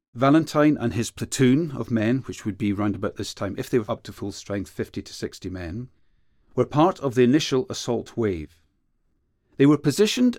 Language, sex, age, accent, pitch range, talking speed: English, male, 40-59, British, 100-125 Hz, 195 wpm